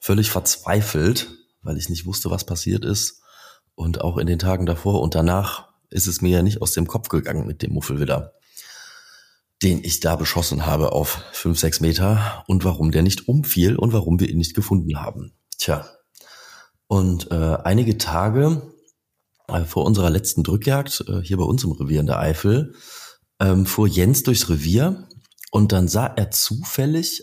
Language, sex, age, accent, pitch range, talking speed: German, male, 30-49, German, 85-115 Hz, 175 wpm